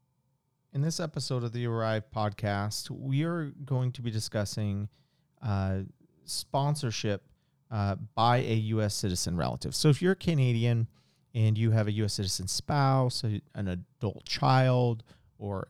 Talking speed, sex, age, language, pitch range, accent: 145 wpm, male, 40-59, English, 105-135 Hz, American